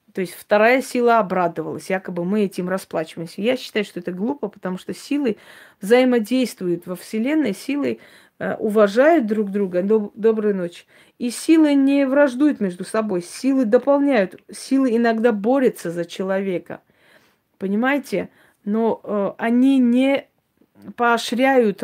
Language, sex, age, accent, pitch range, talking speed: Russian, female, 20-39, native, 190-245 Hz, 130 wpm